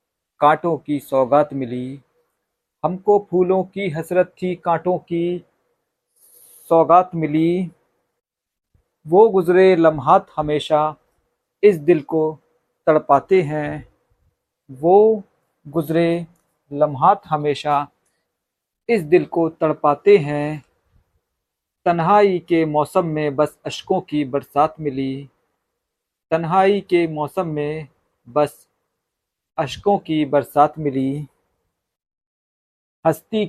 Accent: native